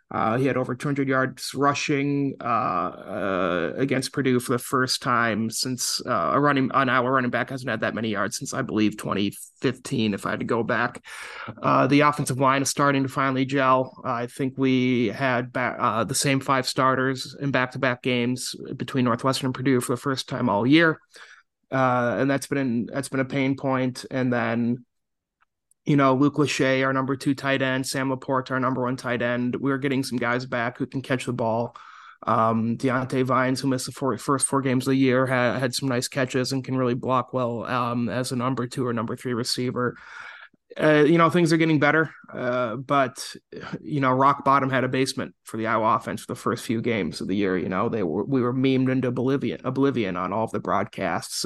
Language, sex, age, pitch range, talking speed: English, male, 30-49, 125-135 Hz, 215 wpm